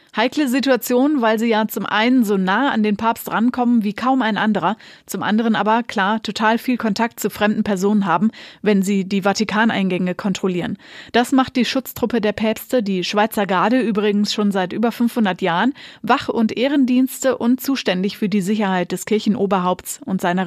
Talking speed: 175 wpm